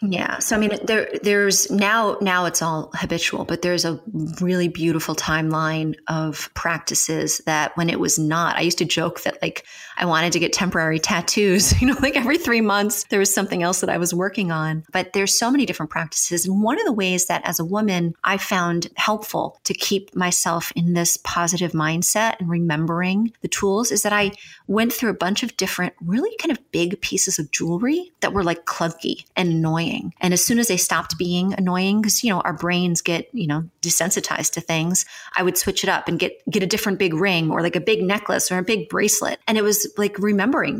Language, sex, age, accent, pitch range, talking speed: English, female, 30-49, American, 170-205 Hz, 215 wpm